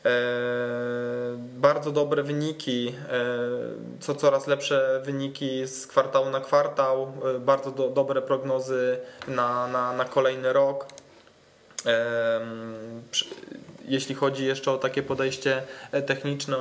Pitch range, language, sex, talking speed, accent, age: 130-145 Hz, Polish, male, 95 wpm, native, 20-39